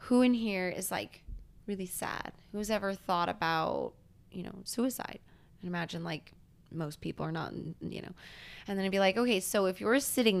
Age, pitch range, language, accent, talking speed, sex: 20-39, 180-225 Hz, English, American, 190 wpm, female